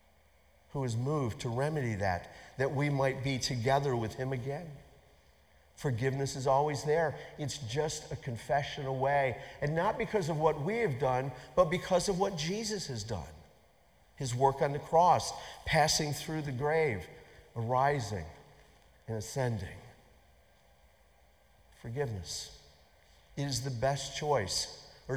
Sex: male